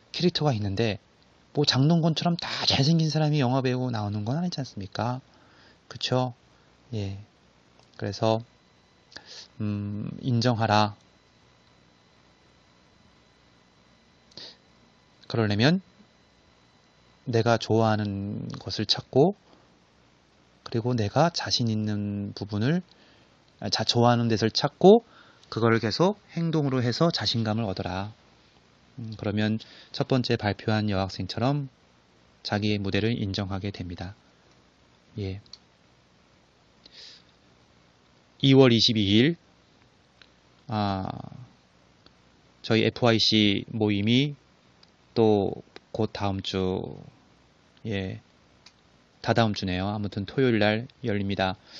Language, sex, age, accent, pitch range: Korean, male, 30-49, native, 95-125 Hz